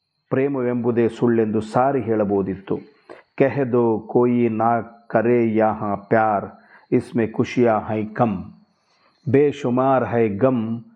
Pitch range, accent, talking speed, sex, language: 110-130 Hz, native, 105 wpm, male, Kannada